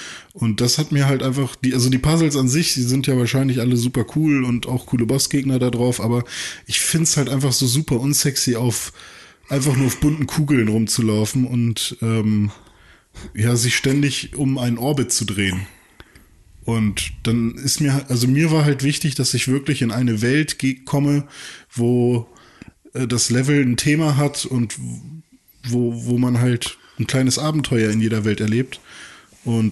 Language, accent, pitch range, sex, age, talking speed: German, German, 110-135 Hz, male, 20-39, 170 wpm